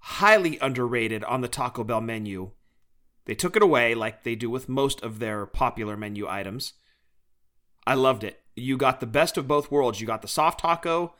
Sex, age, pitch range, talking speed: male, 30-49, 115-155 Hz, 195 wpm